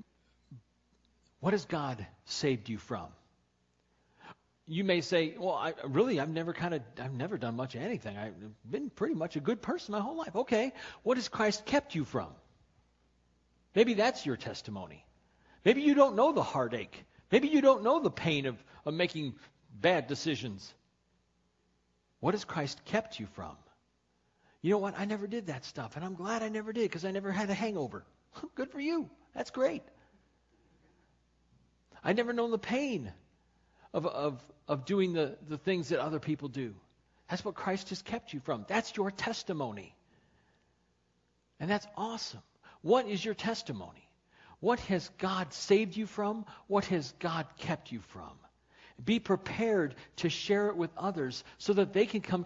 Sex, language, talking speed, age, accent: male, English, 170 wpm, 50-69, American